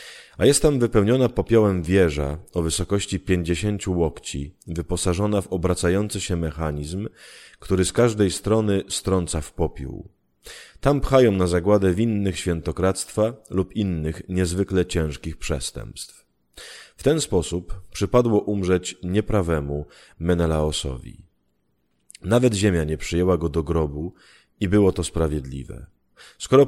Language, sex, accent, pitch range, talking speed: Polish, male, native, 80-105 Hz, 115 wpm